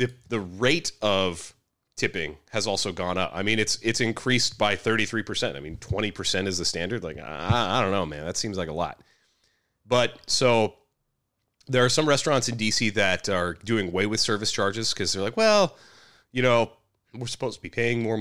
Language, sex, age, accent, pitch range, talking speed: English, male, 30-49, American, 90-115 Hz, 200 wpm